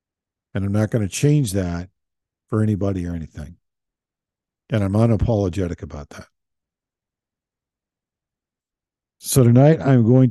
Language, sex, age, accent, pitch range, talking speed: English, male, 50-69, American, 90-110 Hz, 115 wpm